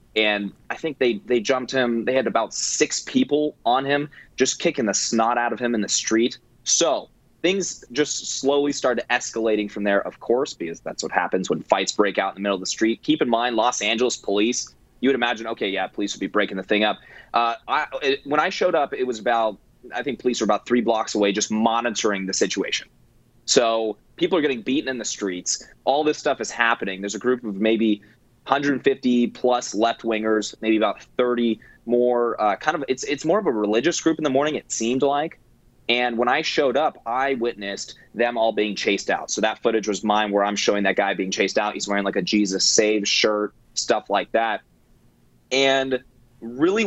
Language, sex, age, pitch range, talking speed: English, male, 20-39, 105-130 Hz, 210 wpm